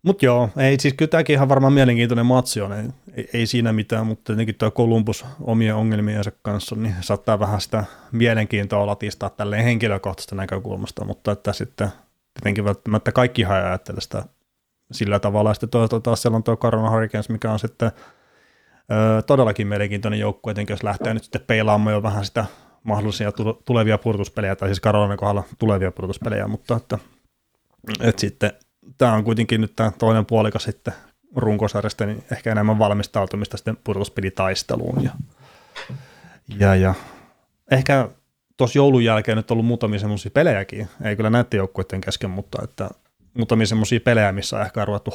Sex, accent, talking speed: male, native, 160 wpm